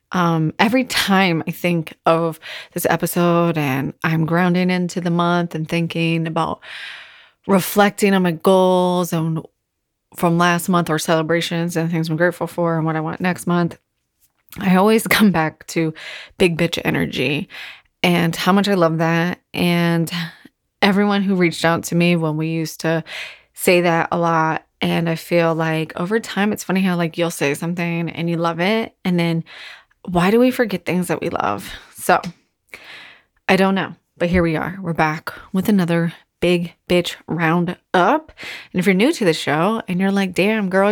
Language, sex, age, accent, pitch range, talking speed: English, female, 20-39, American, 165-195 Hz, 180 wpm